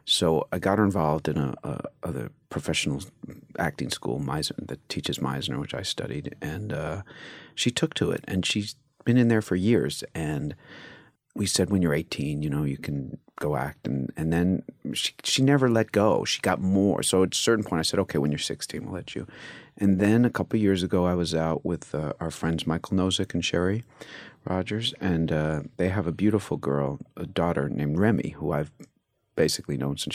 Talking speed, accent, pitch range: 205 wpm, American, 75-105 Hz